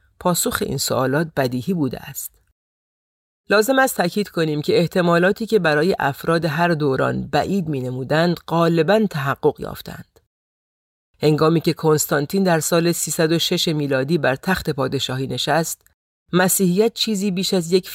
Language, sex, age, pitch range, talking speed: Persian, female, 40-59, 140-185 Hz, 125 wpm